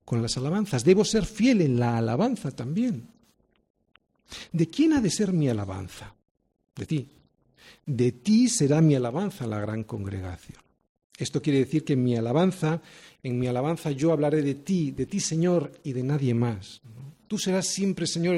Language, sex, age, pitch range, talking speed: Spanish, male, 50-69, 110-155 Hz, 165 wpm